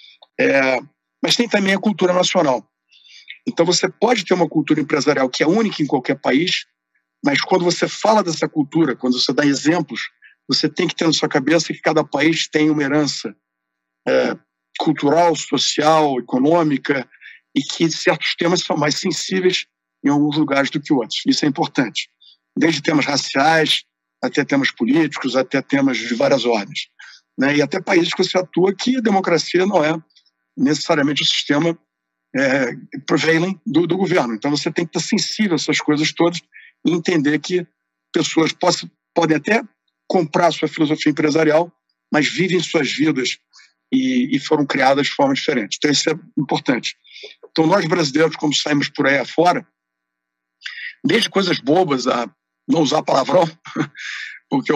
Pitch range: 135-175 Hz